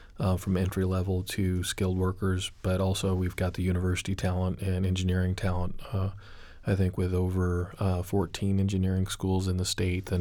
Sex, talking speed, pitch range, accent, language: male, 175 wpm, 90-95 Hz, American, English